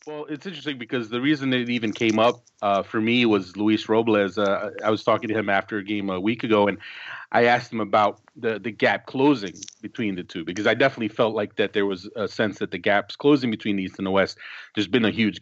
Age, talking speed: 30-49, 250 wpm